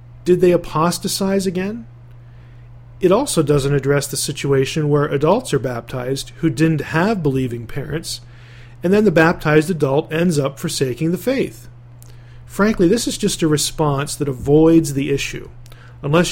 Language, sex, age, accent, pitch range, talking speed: English, male, 40-59, American, 120-165 Hz, 145 wpm